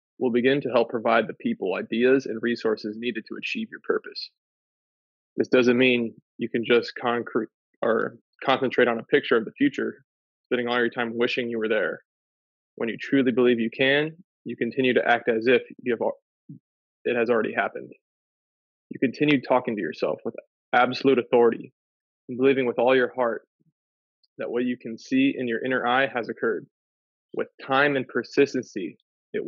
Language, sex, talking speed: English, male, 170 wpm